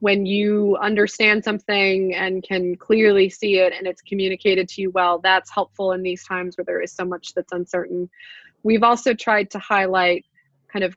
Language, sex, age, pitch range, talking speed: English, female, 20-39, 175-195 Hz, 185 wpm